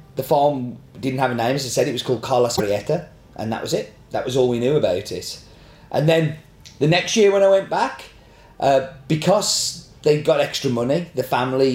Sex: male